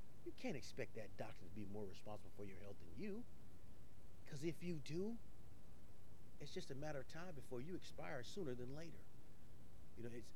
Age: 30-49